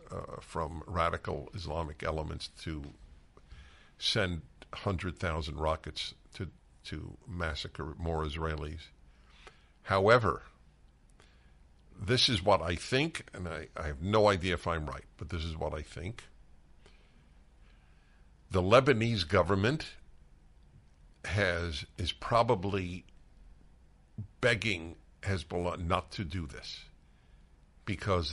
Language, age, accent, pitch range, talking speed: English, 60-79, American, 75-100 Hz, 105 wpm